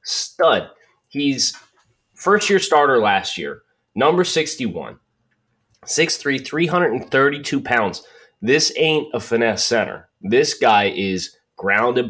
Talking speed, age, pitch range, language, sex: 100 wpm, 30-49, 110-145 Hz, English, male